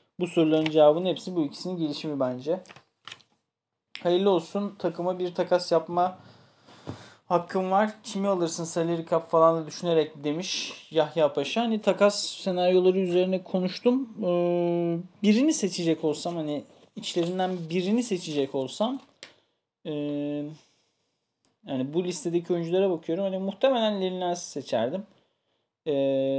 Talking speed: 110 wpm